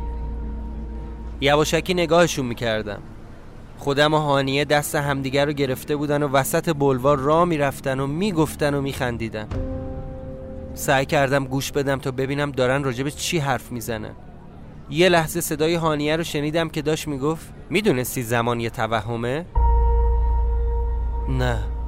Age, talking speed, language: 20-39, 125 wpm, Persian